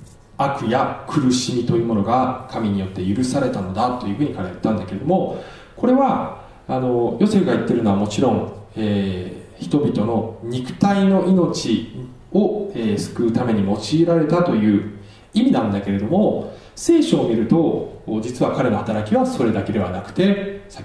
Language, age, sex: Japanese, 20-39, male